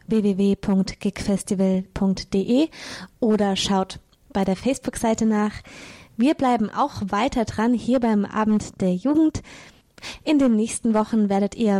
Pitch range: 200-240 Hz